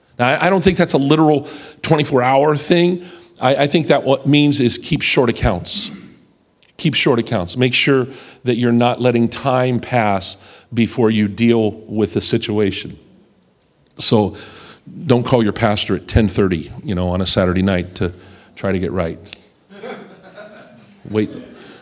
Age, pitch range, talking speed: 40-59, 100-135 Hz, 155 wpm